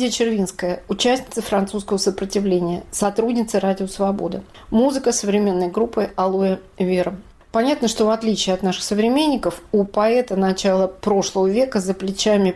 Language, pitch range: Russian, 180-210 Hz